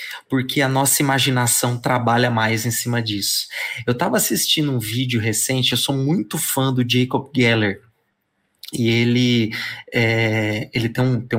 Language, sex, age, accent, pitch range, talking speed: Portuguese, male, 20-39, Brazilian, 120-155 Hz, 155 wpm